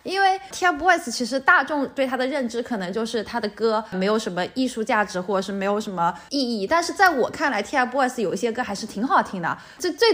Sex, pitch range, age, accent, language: female, 210-295 Hz, 10-29, native, Chinese